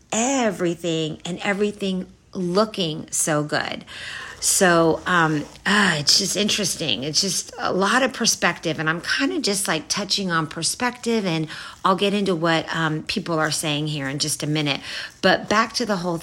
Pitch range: 150-185 Hz